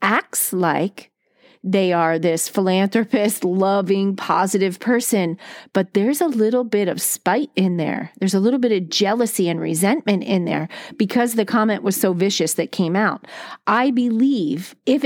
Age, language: 40-59, English